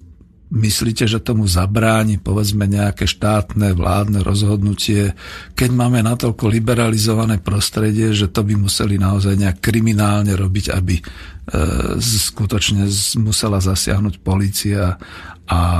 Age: 50-69